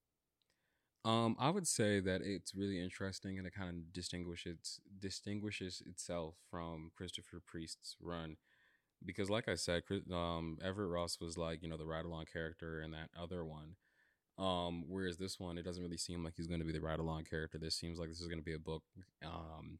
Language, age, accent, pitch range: English, 20-39, American, 80-100 Hz